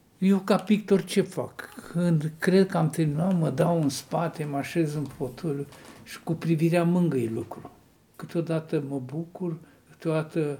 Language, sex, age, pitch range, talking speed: Romanian, male, 60-79, 140-185 Hz, 155 wpm